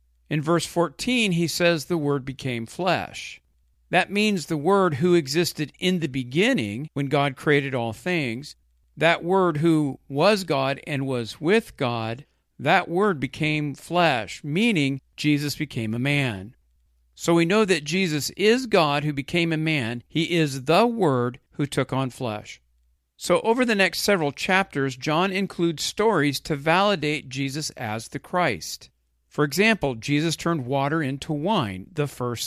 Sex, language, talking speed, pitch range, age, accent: male, English, 155 wpm, 130-175 Hz, 50-69, American